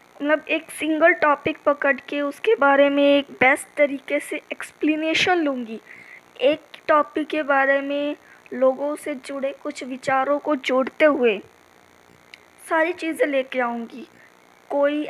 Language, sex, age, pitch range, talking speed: Hindi, female, 20-39, 265-310 Hz, 130 wpm